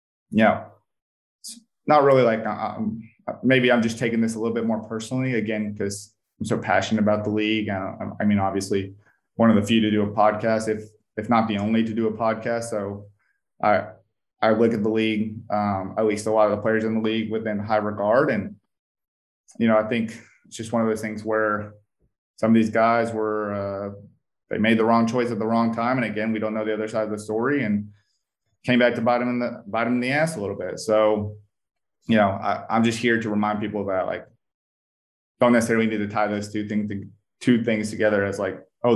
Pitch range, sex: 105-115 Hz, male